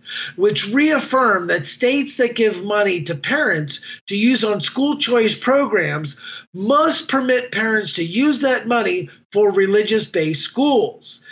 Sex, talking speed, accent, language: male, 135 wpm, American, English